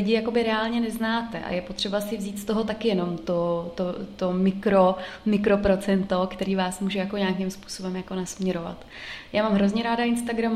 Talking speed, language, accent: 180 wpm, Czech, native